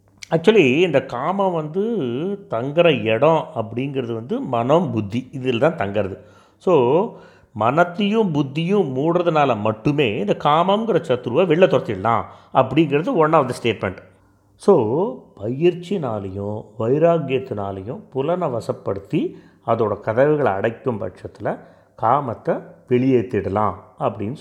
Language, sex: Tamil, male